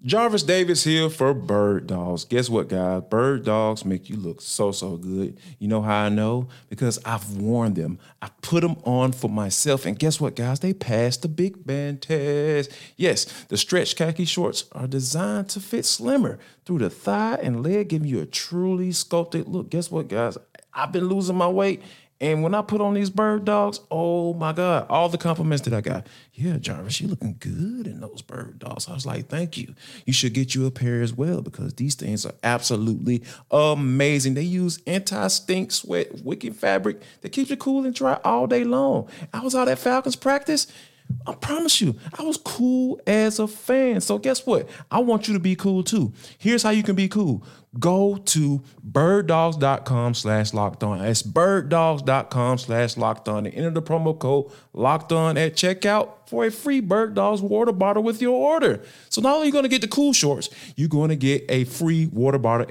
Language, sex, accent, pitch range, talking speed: English, male, American, 125-195 Hz, 200 wpm